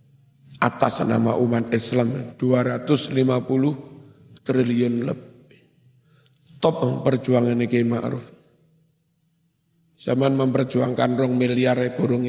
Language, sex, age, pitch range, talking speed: Indonesian, male, 50-69, 125-155 Hz, 80 wpm